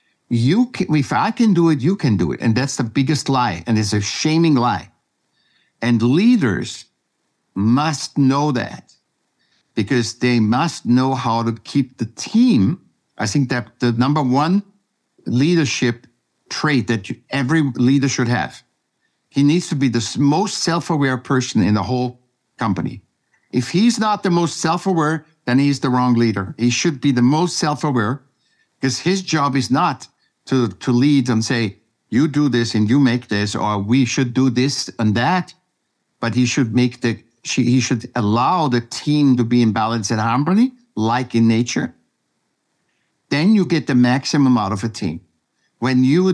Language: English